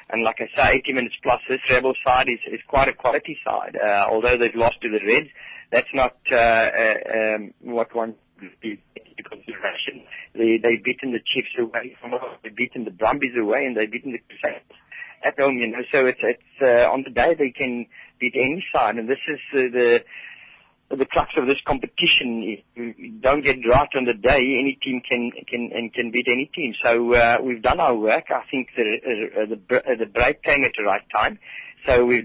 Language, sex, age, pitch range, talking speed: English, male, 30-49, 115-125 Hz, 215 wpm